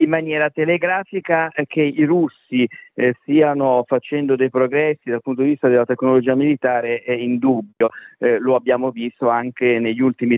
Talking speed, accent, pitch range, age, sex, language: 160 wpm, native, 120-145 Hz, 50-69, male, Italian